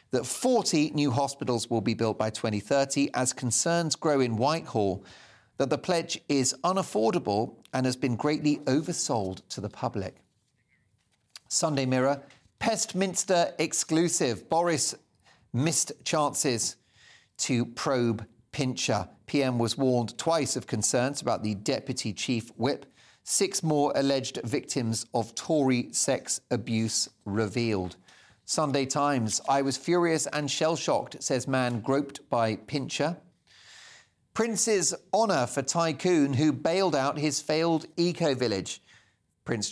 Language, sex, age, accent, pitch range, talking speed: English, male, 40-59, British, 115-155 Hz, 120 wpm